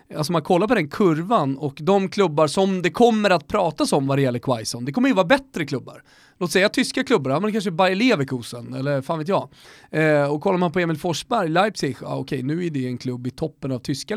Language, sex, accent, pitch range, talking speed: Swedish, male, native, 140-185 Hz, 235 wpm